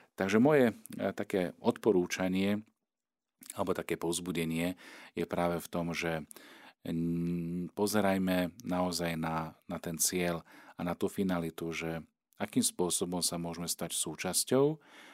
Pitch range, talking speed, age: 85-95 Hz, 115 wpm, 40-59